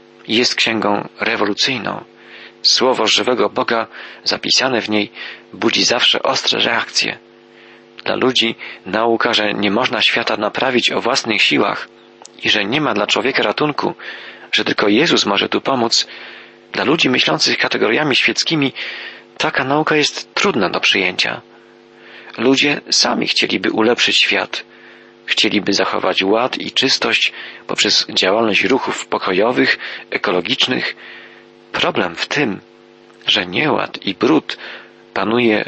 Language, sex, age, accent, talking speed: Polish, male, 40-59, native, 120 wpm